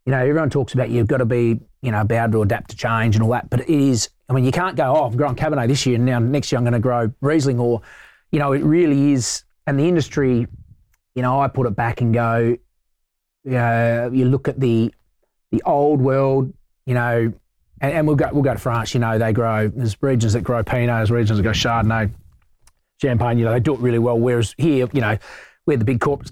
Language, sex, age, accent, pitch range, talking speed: English, male, 30-49, Australian, 110-135 Hz, 250 wpm